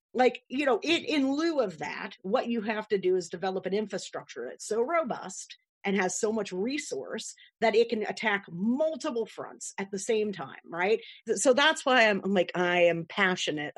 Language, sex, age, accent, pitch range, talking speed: English, female, 40-59, American, 185-255 Hz, 190 wpm